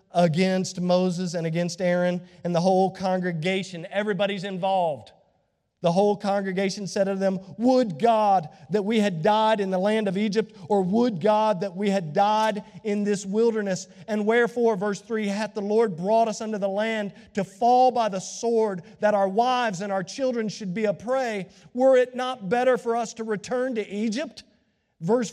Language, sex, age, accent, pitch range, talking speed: English, male, 40-59, American, 175-225 Hz, 180 wpm